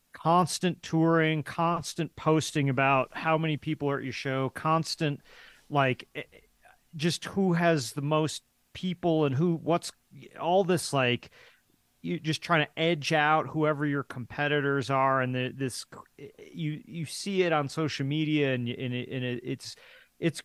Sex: male